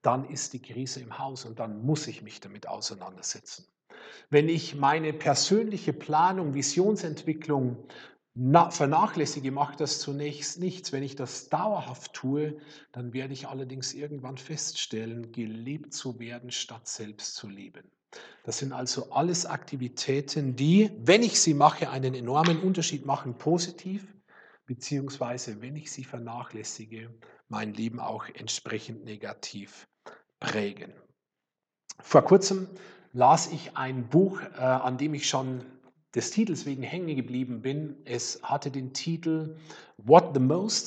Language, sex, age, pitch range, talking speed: German, male, 40-59, 125-165 Hz, 135 wpm